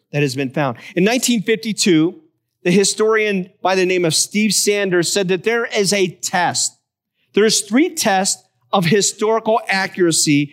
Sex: male